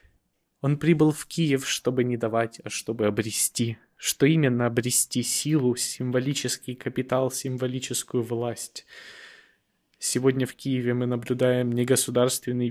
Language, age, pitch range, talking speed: Ukrainian, 20-39, 115-135 Hz, 120 wpm